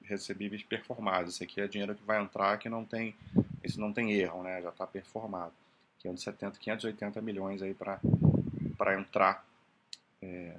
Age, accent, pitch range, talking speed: 30-49, Brazilian, 95-115 Hz, 160 wpm